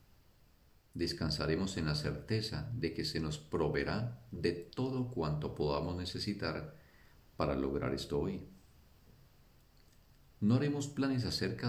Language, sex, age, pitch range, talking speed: Spanish, male, 50-69, 80-115 Hz, 115 wpm